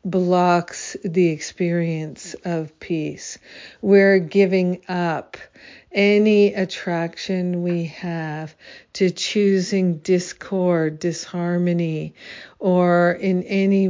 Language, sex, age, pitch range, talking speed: English, female, 50-69, 165-195 Hz, 80 wpm